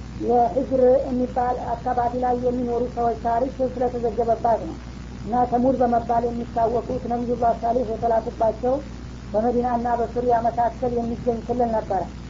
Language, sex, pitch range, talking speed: Amharic, female, 230-250 Hz, 140 wpm